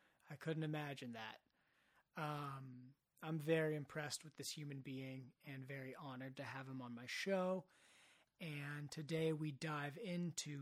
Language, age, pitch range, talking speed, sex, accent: English, 30-49, 140-165 Hz, 145 wpm, male, American